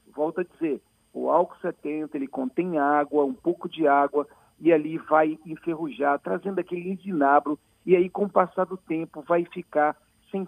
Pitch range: 170-220 Hz